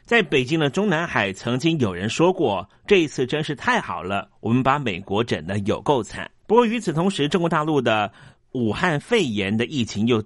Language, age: Chinese, 30-49